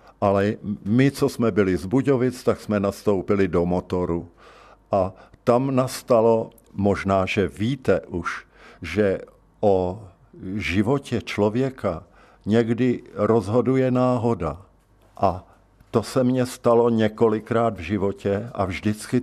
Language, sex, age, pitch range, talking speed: Czech, male, 50-69, 95-120 Hz, 110 wpm